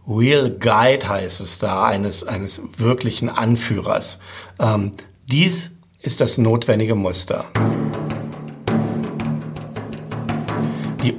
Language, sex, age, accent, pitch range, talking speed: German, male, 50-69, German, 110-145 Hz, 85 wpm